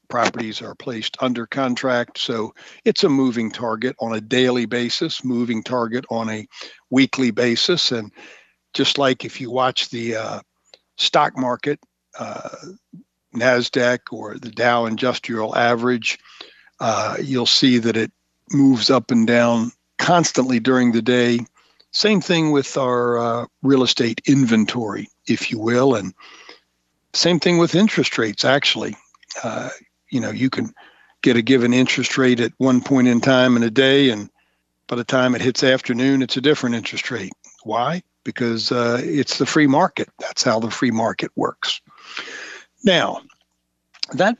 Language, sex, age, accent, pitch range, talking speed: English, male, 60-79, American, 115-140 Hz, 155 wpm